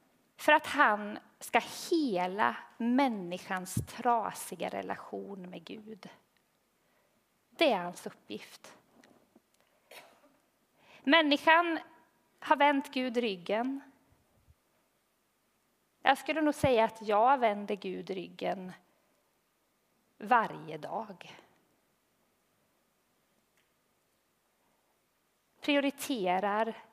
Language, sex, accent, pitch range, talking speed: Swedish, female, native, 190-260 Hz, 70 wpm